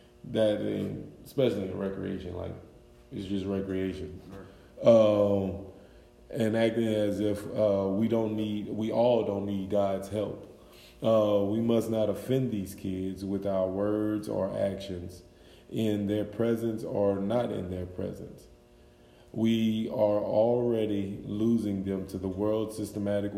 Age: 20-39